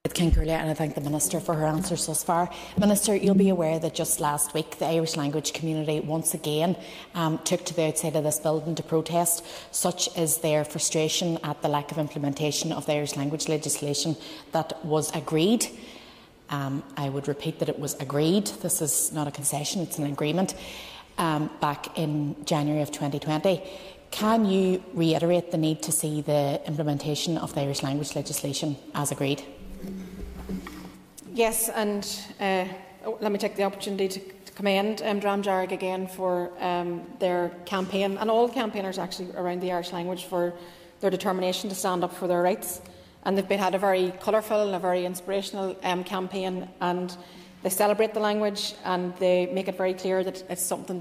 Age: 30-49